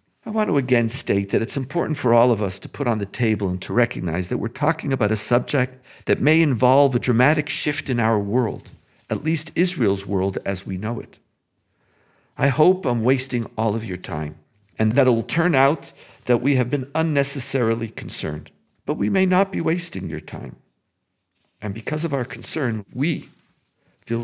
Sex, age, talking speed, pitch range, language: male, 50-69, 195 wpm, 100-140 Hz, English